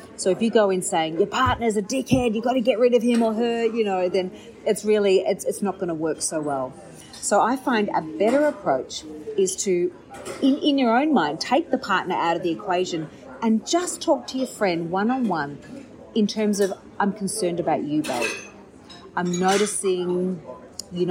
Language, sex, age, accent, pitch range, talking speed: English, female, 40-59, Australian, 170-225 Hz, 200 wpm